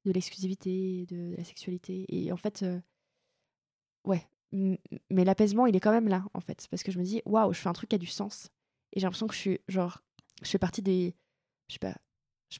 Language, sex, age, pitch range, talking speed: French, female, 20-39, 180-215 Hz, 240 wpm